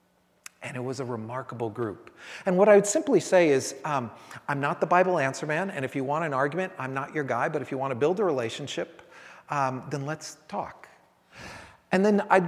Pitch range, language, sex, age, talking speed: 125-180 Hz, English, male, 40-59, 210 wpm